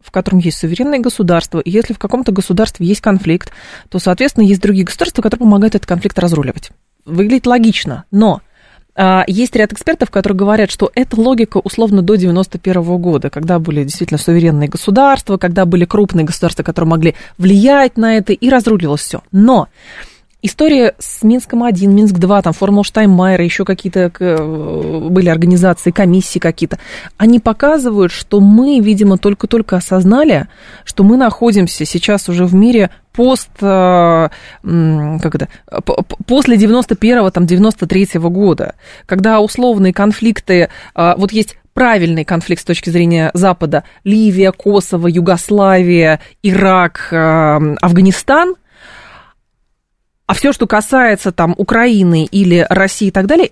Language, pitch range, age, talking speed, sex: Russian, 175-220 Hz, 20-39, 130 wpm, female